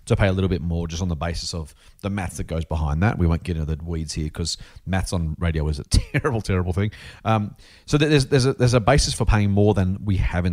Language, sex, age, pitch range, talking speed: English, male, 40-59, 85-115 Hz, 275 wpm